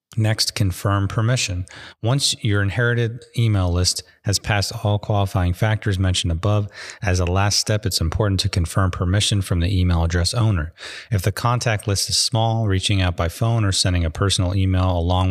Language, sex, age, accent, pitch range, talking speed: English, male, 30-49, American, 90-110 Hz, 175 wpm